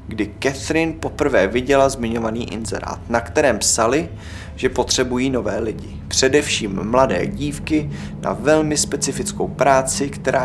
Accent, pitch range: native, 100-140 Hz